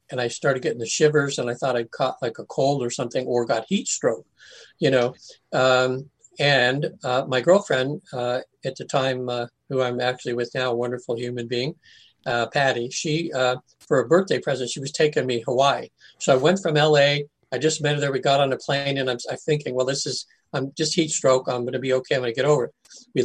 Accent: American